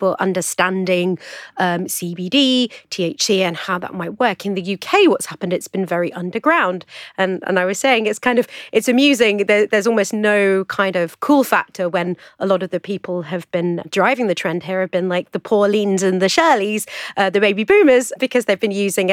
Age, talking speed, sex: 30-49, 200 wpm, female